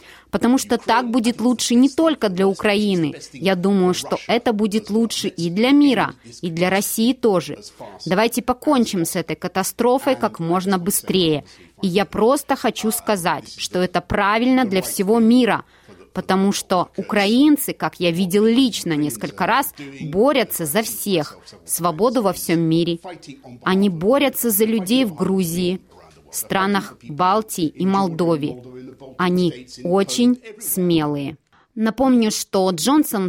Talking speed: 130 wpm